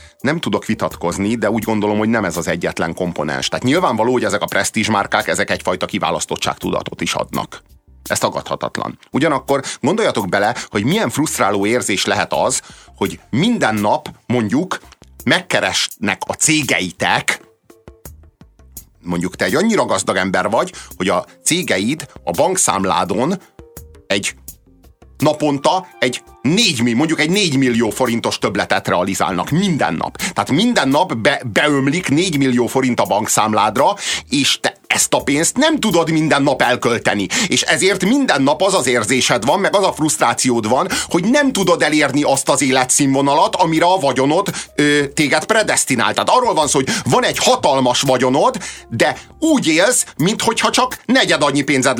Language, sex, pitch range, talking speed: Hungarian, male, 100-155 Hz, 150 wpm